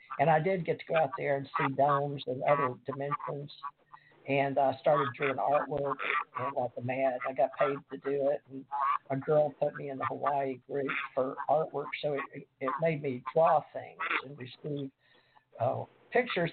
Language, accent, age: English, American, 50-69